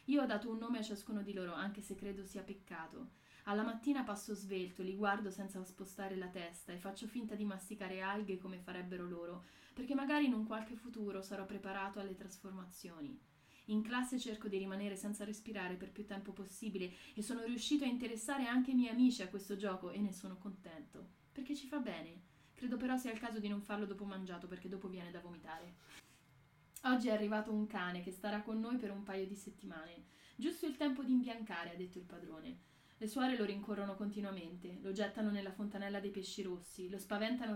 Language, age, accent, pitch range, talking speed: Italian, 20-39, native, 185-225 Hz, 200 wpm